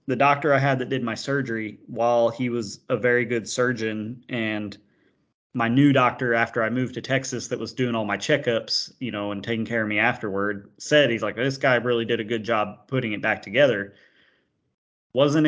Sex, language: male, English